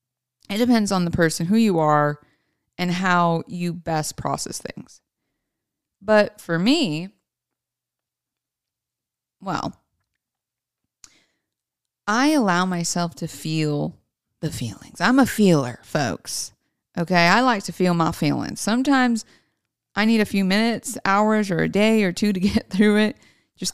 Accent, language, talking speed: American, English, 135 wpm